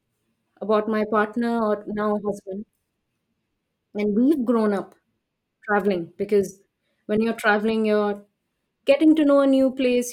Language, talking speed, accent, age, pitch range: English, 130 wpm, Indian, 20-39, 200-240 Hz